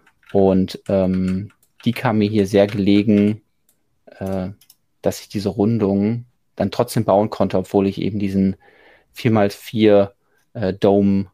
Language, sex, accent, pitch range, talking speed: German, male, German, 100-120 Hz, 120 wpm